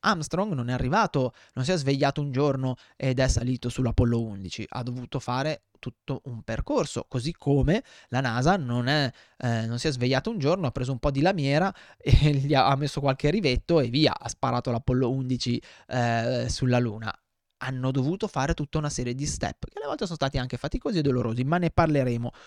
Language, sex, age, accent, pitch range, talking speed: Italian, male, 20-39, native, 115-150 Hz, 200 wpm